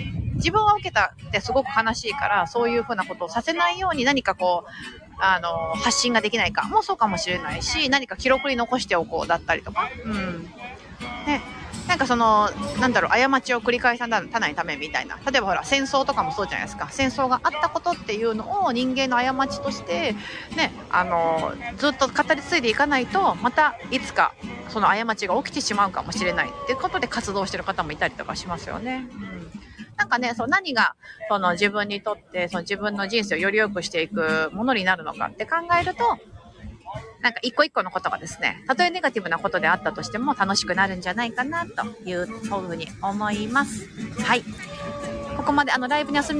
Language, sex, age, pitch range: Japanese, female, 30-49, 200-265 Hz